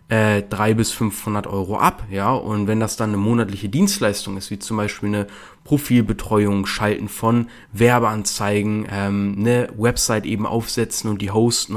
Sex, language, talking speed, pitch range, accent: male, German, 160 wpm, 105-135 Hz, German